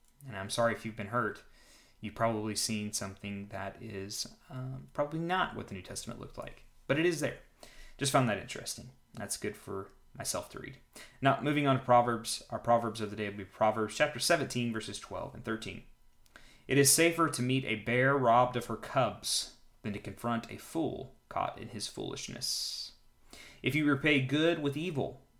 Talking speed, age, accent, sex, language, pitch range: 190 wpm, 20-39, American, male, English, 105-135 Hz